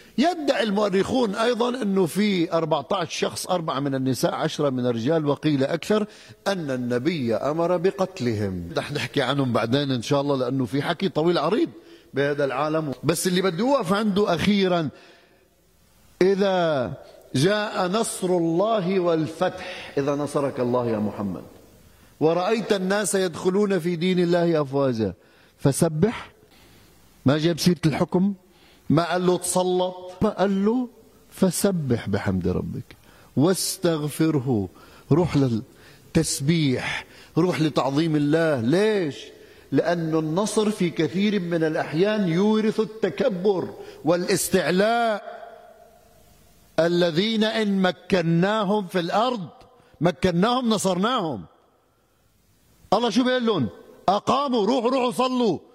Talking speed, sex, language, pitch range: 110 wpm, male, Arabic, 150-210 Hz